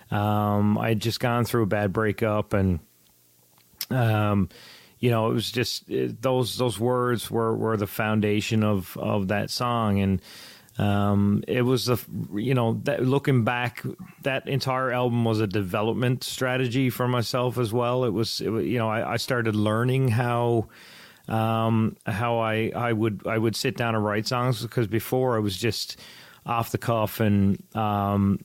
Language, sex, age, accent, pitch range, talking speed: English, male, 30-49, American, 105-120 Hz, 165 wpm